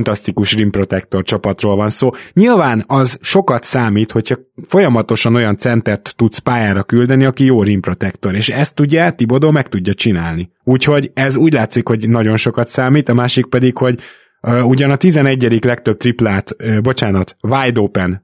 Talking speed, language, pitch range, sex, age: 160 wpm, Hungarian, 105-130 Hz, male, 20-39